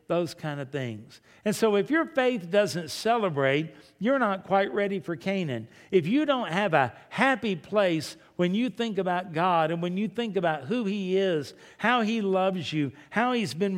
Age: 60-79